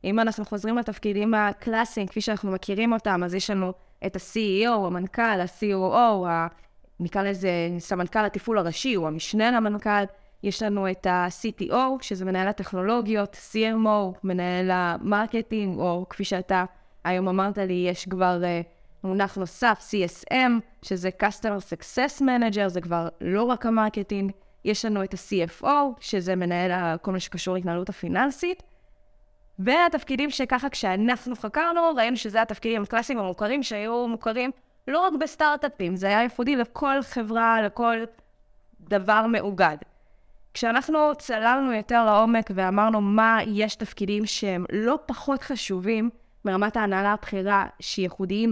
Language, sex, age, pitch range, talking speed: Hebrew, female, 20-39, 190-230 Hz, 125 wpm